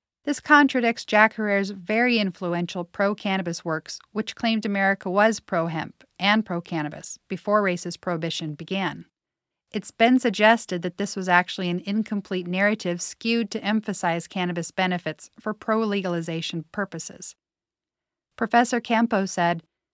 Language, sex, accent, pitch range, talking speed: English, female, American, 175-220 Hz, 120 wpm